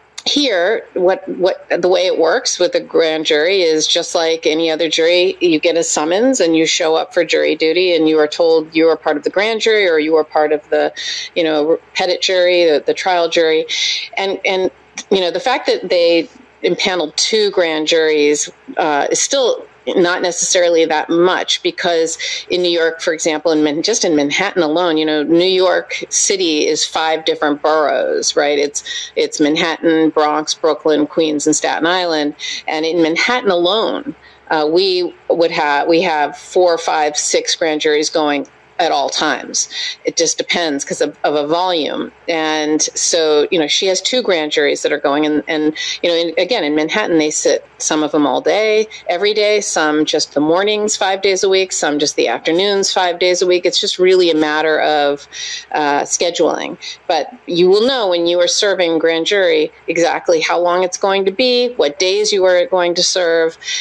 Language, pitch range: English, 160-220 Hz